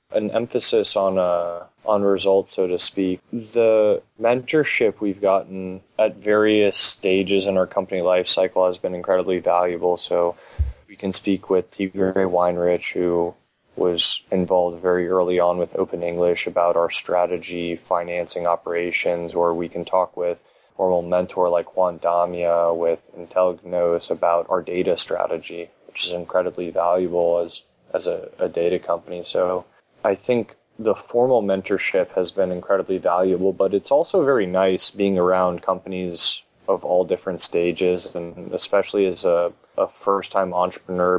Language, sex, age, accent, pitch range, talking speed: English, male, 20-39, American, 90-95 Hz, 145 wpm